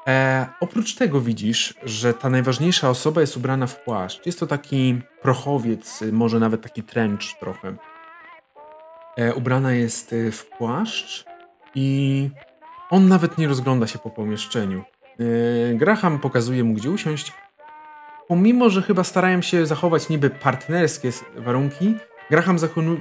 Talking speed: 135 wpm